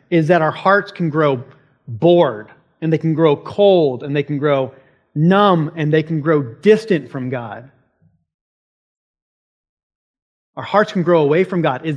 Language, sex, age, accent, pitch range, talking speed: English, male, 40-59, American, 135-185 Hz, 160 wpm